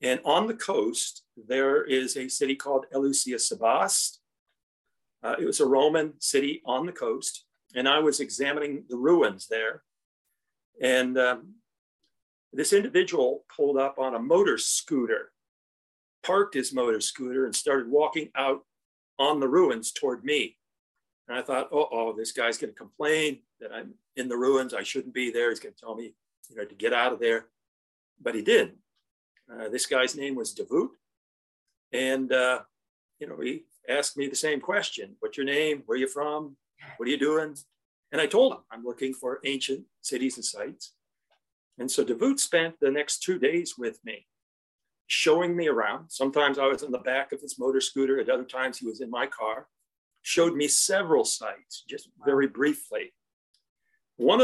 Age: 50-69